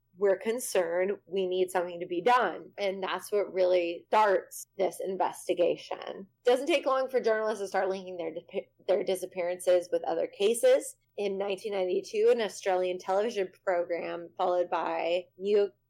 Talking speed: 145 wpm